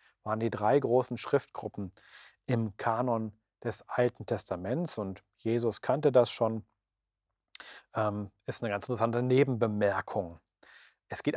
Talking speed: 120 wpm